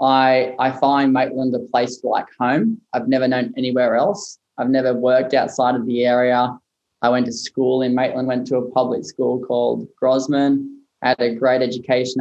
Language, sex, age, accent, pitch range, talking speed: English, male, 10-29, Australian, 125-135 Hz, 185 wpm